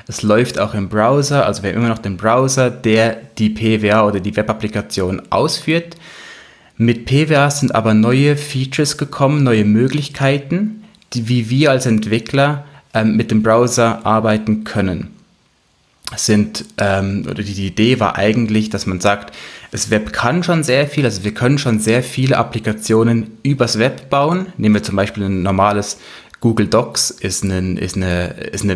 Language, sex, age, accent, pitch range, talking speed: German, male, 20-39, German, 105-130 Hz, 165 wpm